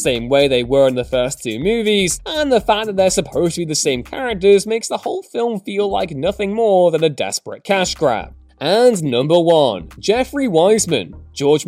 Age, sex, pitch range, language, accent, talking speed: 20-39, male, 150-240 Hz, English, British, 200 wpm